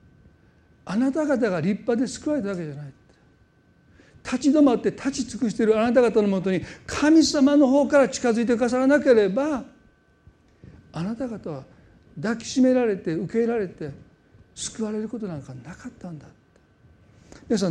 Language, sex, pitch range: Japanese, male, 155-225 Hz